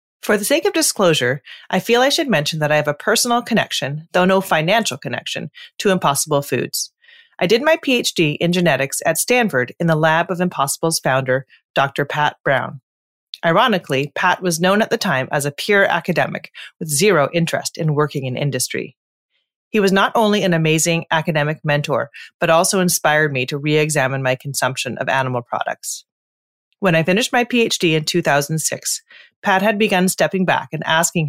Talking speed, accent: 175 wpm, American